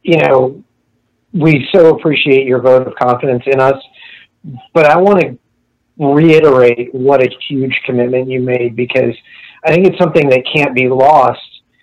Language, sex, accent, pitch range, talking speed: English, male, American, 125-150 Hz, 155 wpm